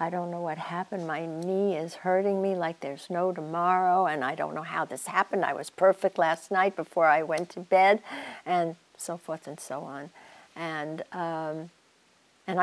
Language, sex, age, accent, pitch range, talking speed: English, female, 60-79, American, 170-200 Hz, 190 wpm